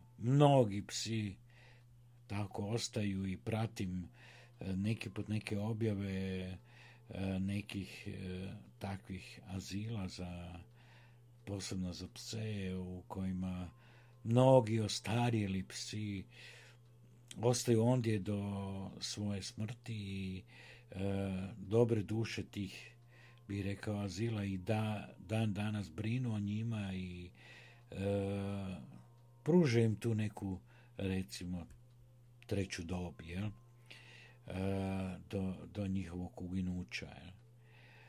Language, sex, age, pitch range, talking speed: Croatian, male, 50-69, 95-120 Hz, 80 wpm